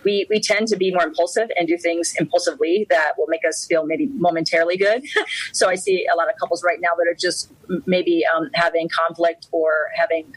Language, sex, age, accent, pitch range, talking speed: English, female, 30-49, American, 165-205 Hz, 215 wpm